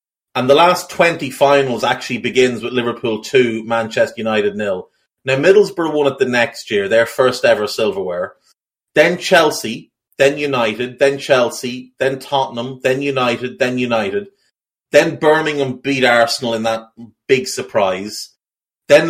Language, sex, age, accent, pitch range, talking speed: English, male, 30-49, Irish, 115-140 Hz, 140 wpm